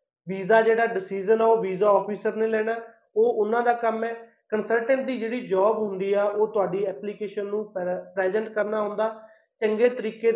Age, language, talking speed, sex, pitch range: 30-49, Punjabi, 170 wpm, male, 200-230 Hz